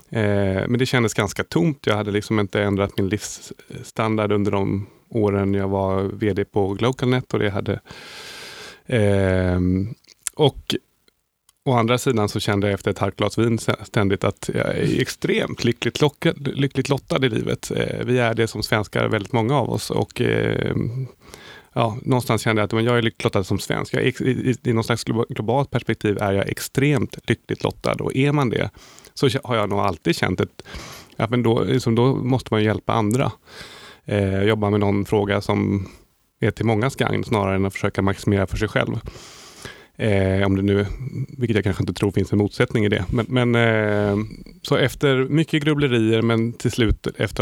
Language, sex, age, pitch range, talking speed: Swedish, male, 30-49, 100-125 Hz, 170 wpm